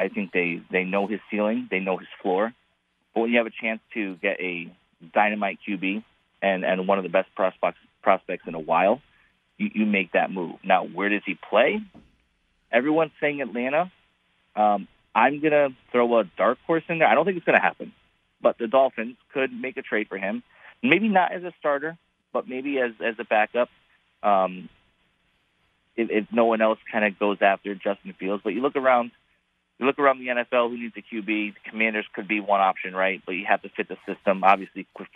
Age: 30-49